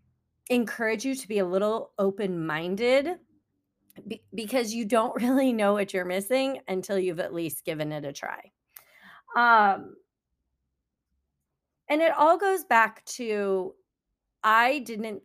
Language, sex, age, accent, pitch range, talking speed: English, female, 40-59, American, 180-250 Hz, 130 wpm